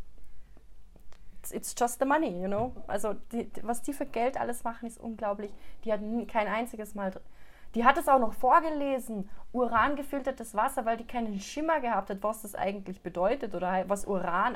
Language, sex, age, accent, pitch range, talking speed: German, female, 30-49, German, 195-255 Hz, 175 wpm